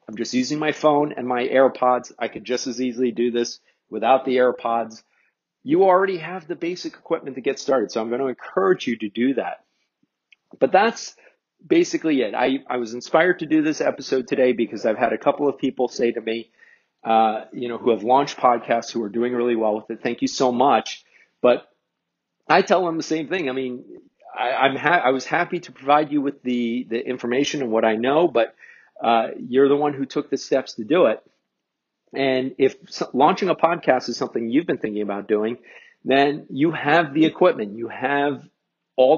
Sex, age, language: male, 40-59, English